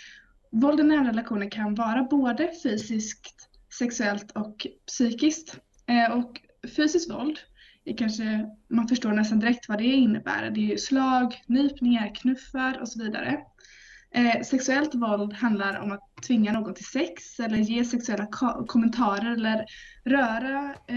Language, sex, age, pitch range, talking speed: Swedish, female, 20-39, 215-265 Hz, 130 wpm